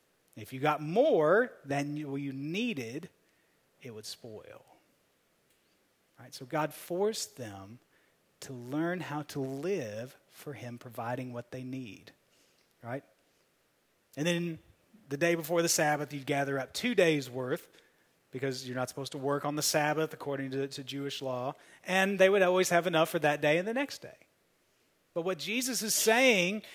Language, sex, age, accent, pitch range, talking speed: English, male, 30-49, American, 150-235 Hz, 160 wpm